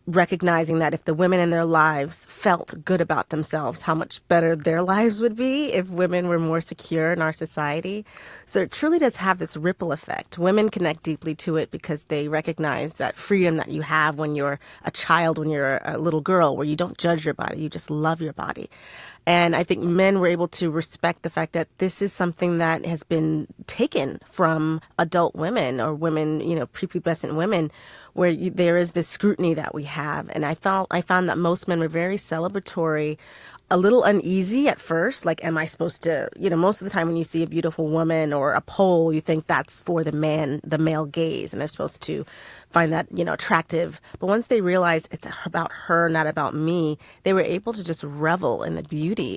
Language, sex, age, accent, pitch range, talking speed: English, female, 30-49, American, 155-180 Hz, 215 wpm